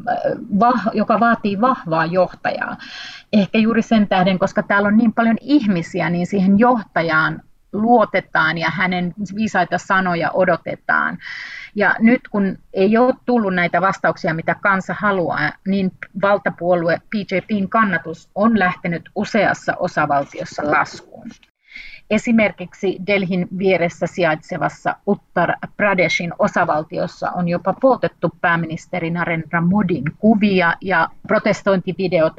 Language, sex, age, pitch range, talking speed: Finnish, female, 30-49, 175-210 Hz, 110 wpm